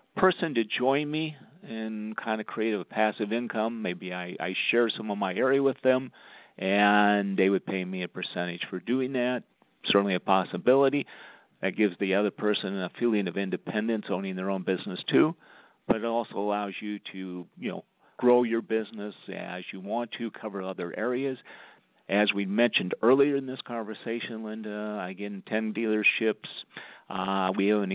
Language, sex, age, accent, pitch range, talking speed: English, male, 50-69, American, 100-120 Hz, 175 wpm